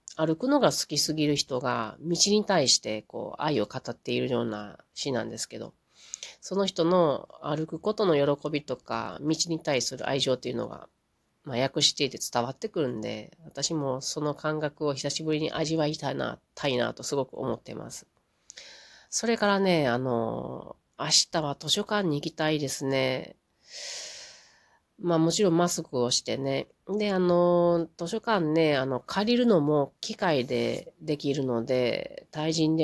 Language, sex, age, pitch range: Japanese, female, 40-59, 125-165 Hz